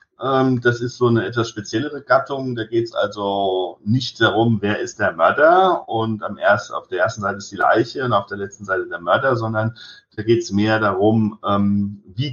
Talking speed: 195 wpm